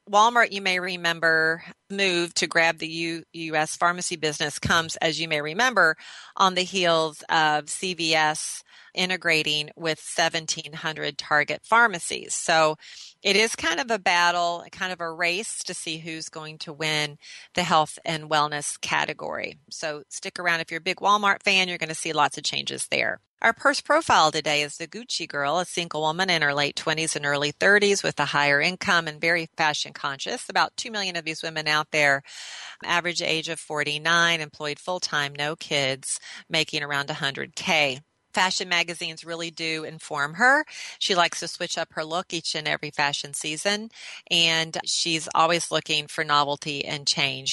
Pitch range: 155-185 Hz